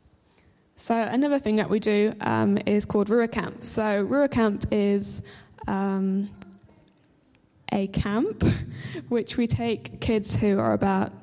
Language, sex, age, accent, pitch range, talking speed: English, female, 10-29, British, 195-220 Hz, 135 wpm